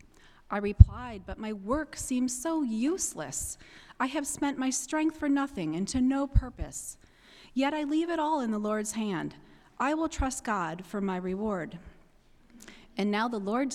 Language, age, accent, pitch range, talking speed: English, 30-49, American, 195-260 Hz, 170 wpm